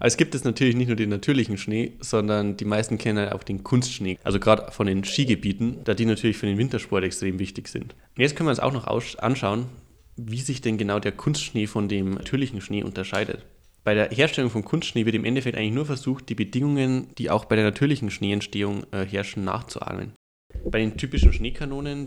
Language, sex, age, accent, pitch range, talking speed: German, male, 20-39, German, 105-130 Hz, 210 wpm